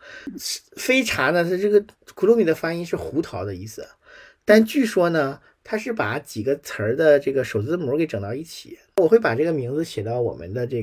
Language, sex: Chinese, male